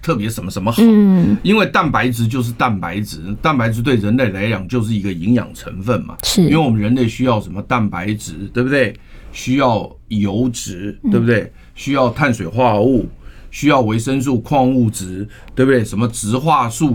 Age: 50-69